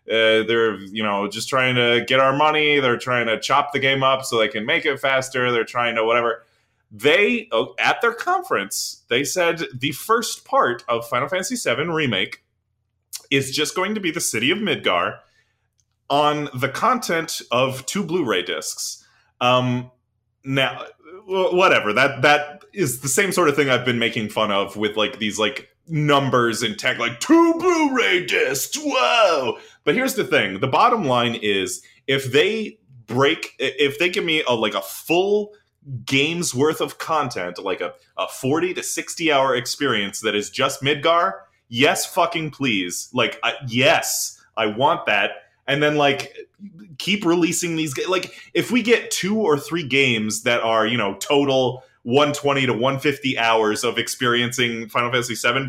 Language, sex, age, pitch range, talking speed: English, male, 20-39, 120-175 Hz, 165 wpm